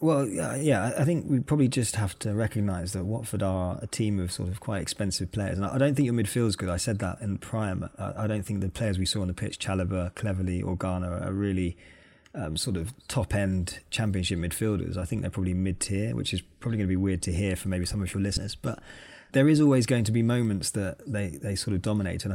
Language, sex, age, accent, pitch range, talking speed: English, male, 20-39, British, 90-110 Hz, 245 wpm